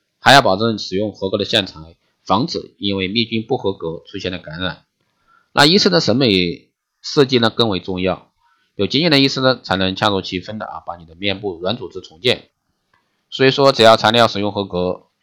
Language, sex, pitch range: Chinese, male, 95-120 Hz